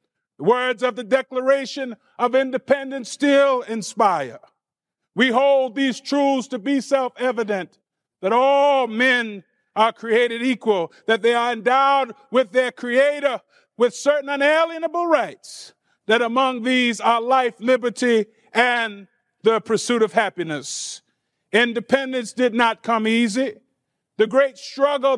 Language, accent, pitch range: English, American, 235-275 Hz